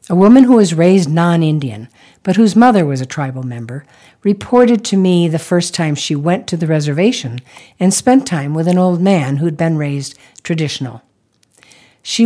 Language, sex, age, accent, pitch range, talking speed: English, female, 60-79, American, 140-210 Hz, 180 wpm